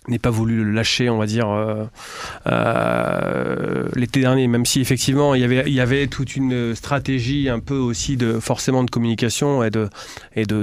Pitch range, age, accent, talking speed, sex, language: 115-140 Hz, 30-49, French, 200 wpm, male, French